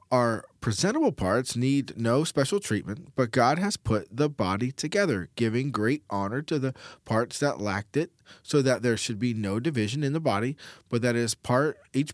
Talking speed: 180 wpm